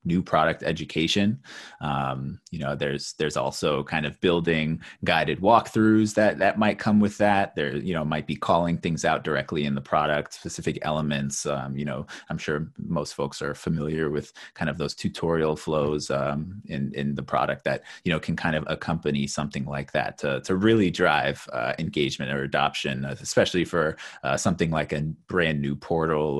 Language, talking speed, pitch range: English, 185 wpm, 70-85 Hz